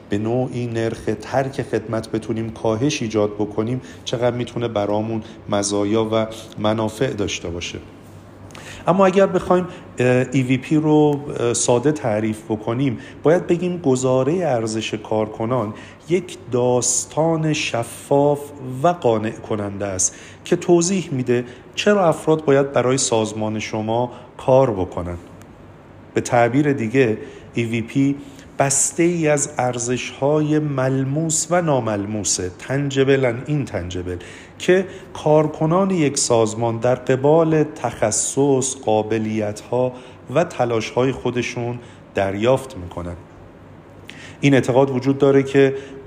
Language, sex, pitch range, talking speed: Persian, male, 110-140 Hz, 110 wpm